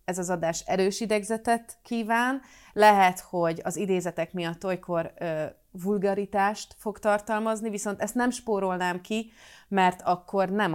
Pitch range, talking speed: 165-200 Hz, 130 wpm